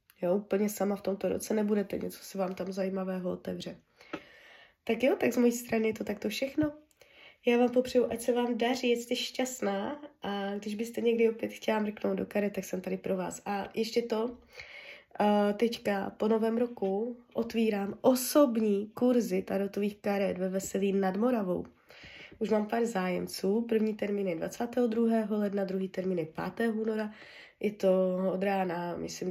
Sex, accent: female, native